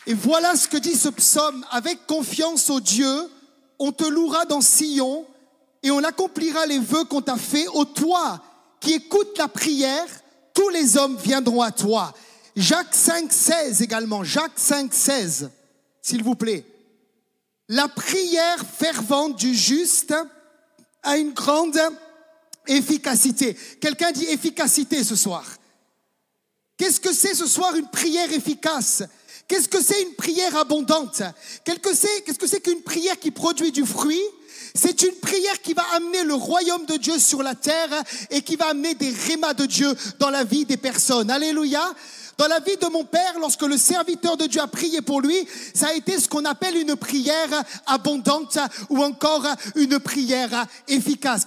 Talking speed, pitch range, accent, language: 165 wpm, 270-330 Hz, French, French